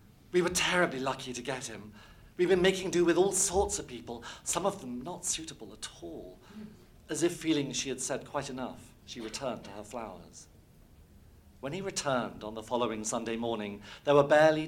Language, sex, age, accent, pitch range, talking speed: English, male, 50-69, British, 110-155 Hz, 190 wpm